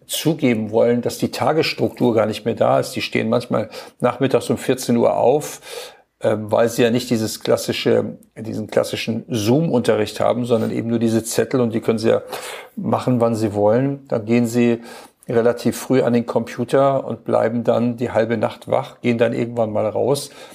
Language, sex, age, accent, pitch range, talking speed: German, male, 50-69, German, 115-125 Hz, 180 wpm